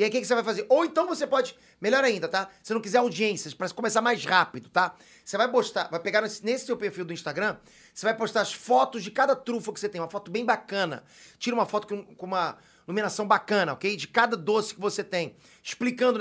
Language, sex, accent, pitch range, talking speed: Portuguese, male, Brazilian, 175-225 Hz, 235 wpm